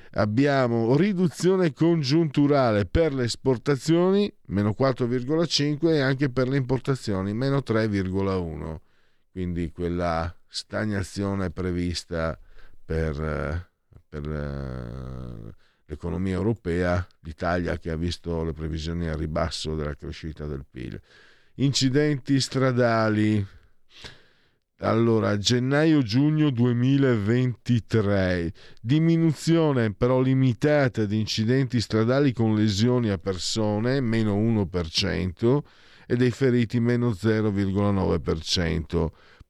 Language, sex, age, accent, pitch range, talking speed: Italian, male, 50-69, native, 90-130 Hz, 90 wpm